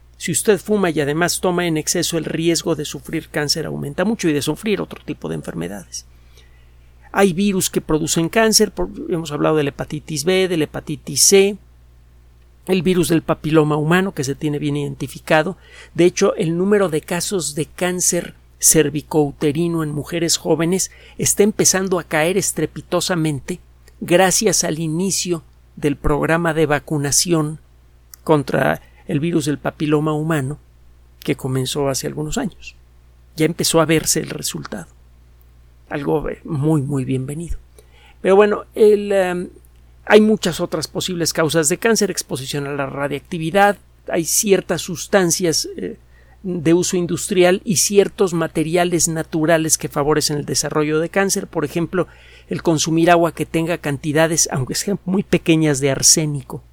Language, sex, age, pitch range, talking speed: Spanish, male, 50-69, 140-180 Hz, 145 wpm